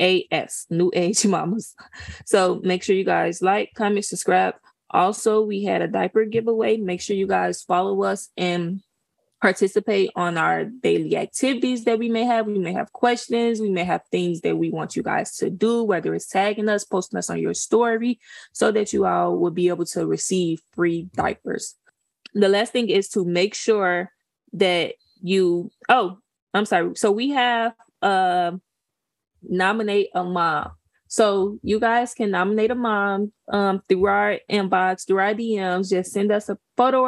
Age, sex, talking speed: 20-39, female, 175 wpm